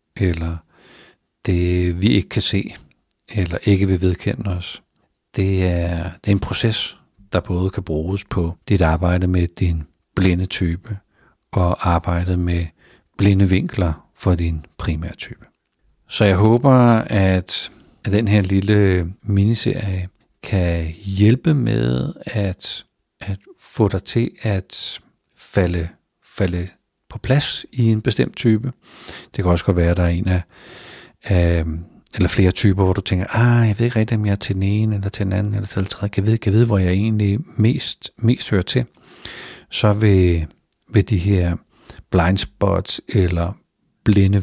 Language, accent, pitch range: Danish, native, 90-105 Hz